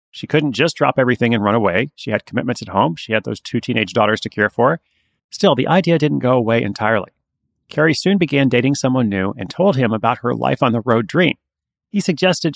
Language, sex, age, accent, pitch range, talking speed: English, male, 30-49, American, 115-150 Hz, 210 wpm